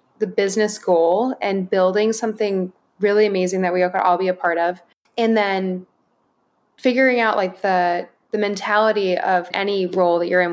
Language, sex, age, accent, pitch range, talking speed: English, female, 20-39, American, 180-210 Hz, 175 wpm